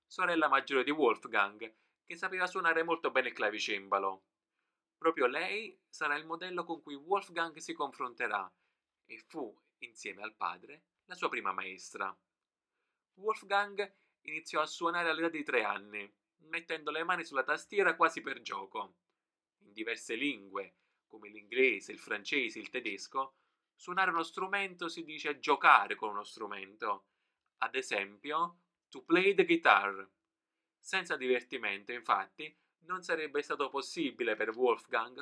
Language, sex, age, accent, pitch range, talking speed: Italian, male, 20-39, native, 140-200 Hz, 135 wpm